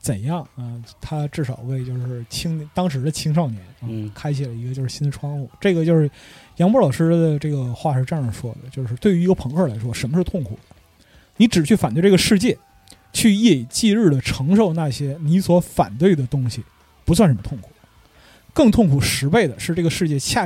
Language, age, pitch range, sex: Chinese, 20-39, 125-175 Hz, male